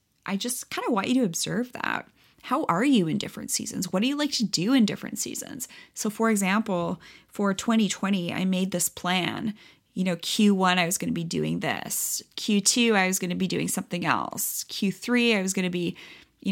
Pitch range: 180-220 Hz